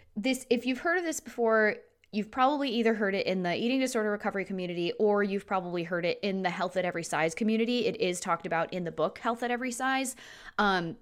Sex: female